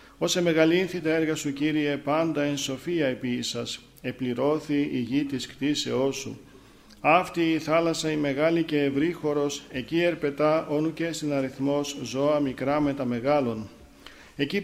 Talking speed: 145 wpm